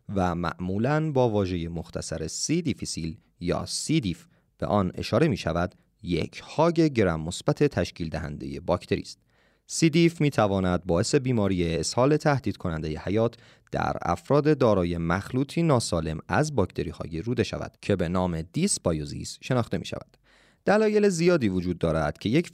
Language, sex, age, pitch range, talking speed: Persian, male, 30-49, 85-140 Hz, 140 wpm